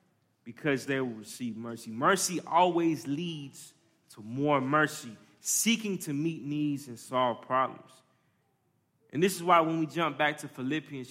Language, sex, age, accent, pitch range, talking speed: English, male, 20-39, American, 130-185 Hz, 150 wpm